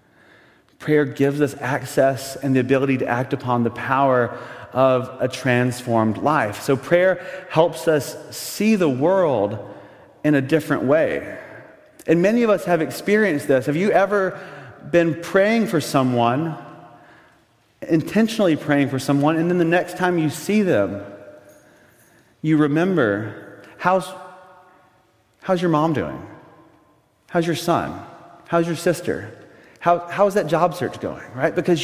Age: 30-49